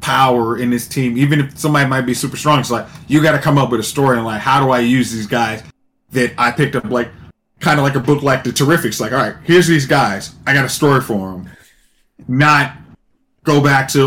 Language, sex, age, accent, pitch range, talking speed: English, male, 20-39, American, 125-150 Hz, 245 wpm